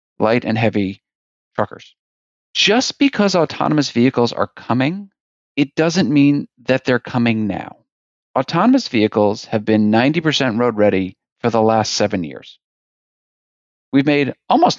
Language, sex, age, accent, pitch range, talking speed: English, male, 40-59, American, 110-165 Hz, 130 wpm